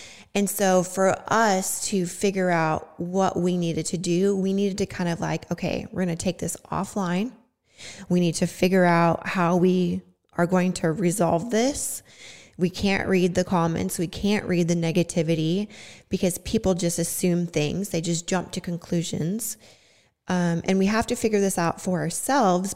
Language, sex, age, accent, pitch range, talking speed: English, female, 20-39, American, 170-195 Hz, 175 wpm